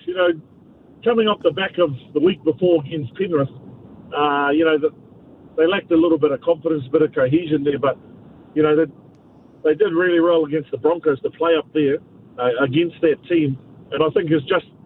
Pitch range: 140-170 Hz